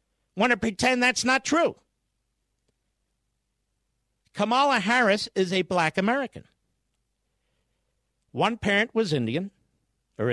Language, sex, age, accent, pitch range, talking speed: English, male, 50-69, American, 195-275 Hz, 100 wpm